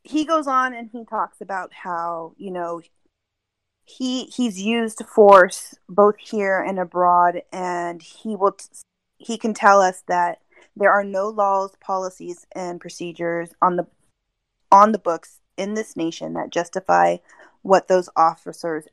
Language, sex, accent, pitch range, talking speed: English, female, American, 175-210 Hz, 150 wpm